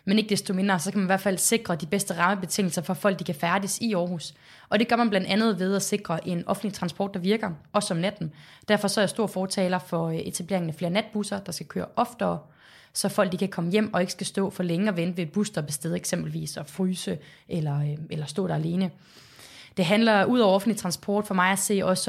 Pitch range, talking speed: 170-205 Hz, 250 wpm